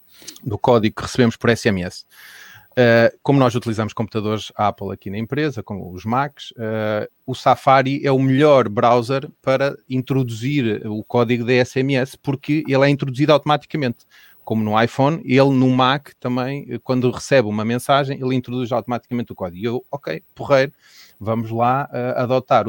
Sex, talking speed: male, 160 wpm